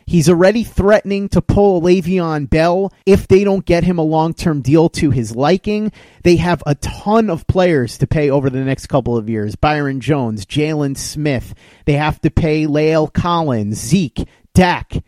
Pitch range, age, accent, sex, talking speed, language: 150-195 Hz, 30-49, American, male, 175 wpm, English